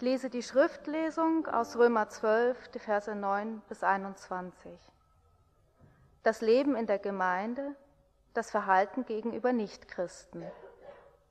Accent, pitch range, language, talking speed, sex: German, 210-270 Hz, English, 110 wpm, female